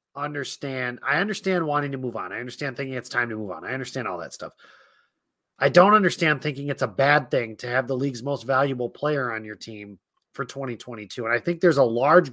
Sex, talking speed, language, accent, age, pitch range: male, 225 wpm, English, American, 30-49, 130-175 Hz